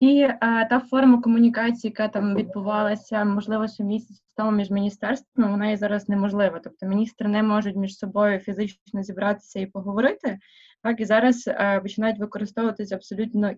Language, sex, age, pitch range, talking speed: Ukrainian, female, 20-39, 195-225 Hz, 140 wpm